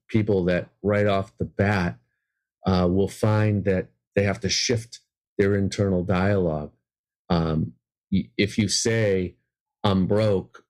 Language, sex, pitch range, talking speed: English, male, 90-105 Hz, 135 wpm